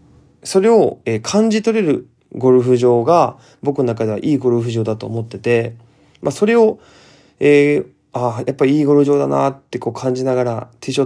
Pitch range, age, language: 115-155 Hz, 20-39, Japanese